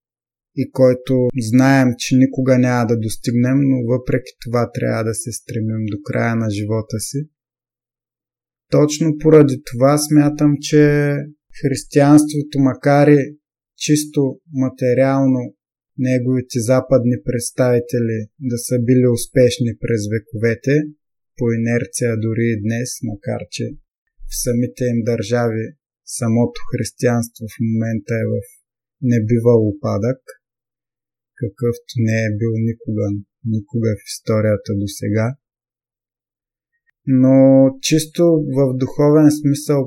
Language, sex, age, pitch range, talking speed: Bulgarian, male, 20-39, 120-135 Hz, 110 wpm